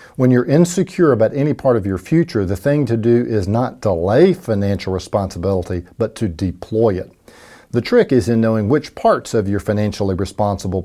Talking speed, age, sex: 185 wpm, 50-69, male